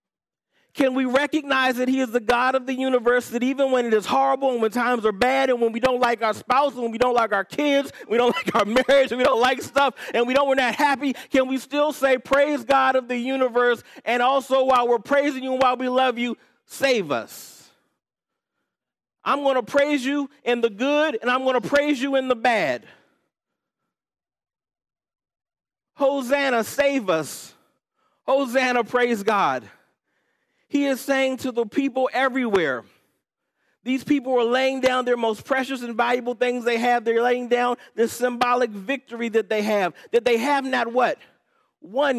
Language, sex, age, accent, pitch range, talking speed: English, male, 40-59, American, 240-275 Hz, 185 wpm